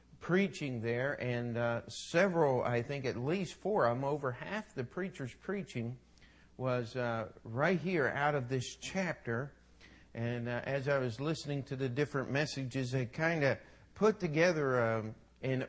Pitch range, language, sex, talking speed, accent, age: 130-180 Hz, English, male, 160 wpm, American, 50-69